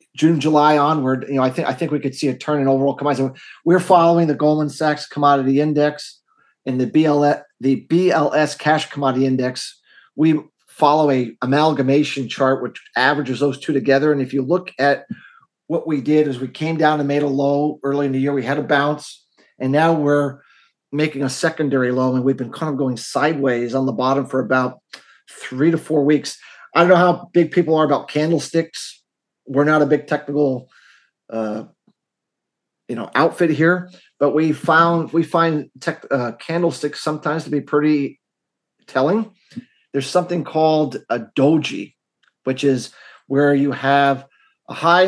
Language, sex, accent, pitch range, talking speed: English, male, American, 135-160 Hz, 175 wpm